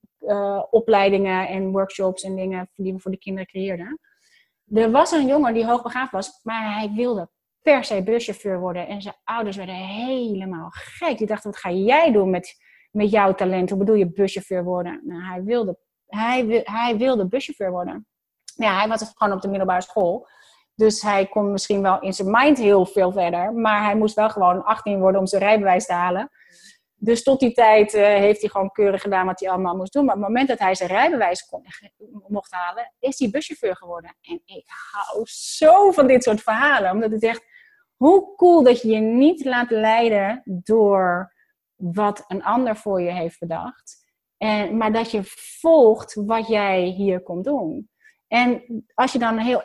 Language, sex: Dutch, female